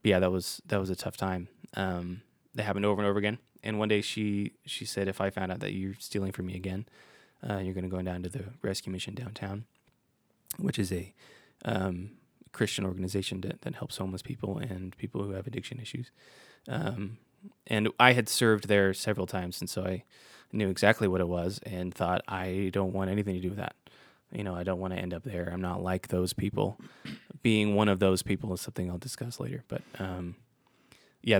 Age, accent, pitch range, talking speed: 20-39, American, 95-110 Hz, 220 wpm